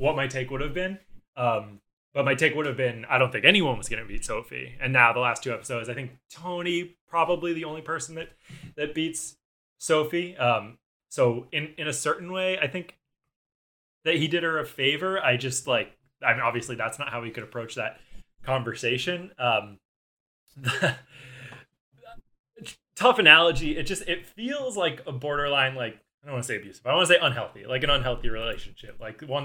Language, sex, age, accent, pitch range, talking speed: English, male, 20-39, American, 120-160 Hz, 195 wpm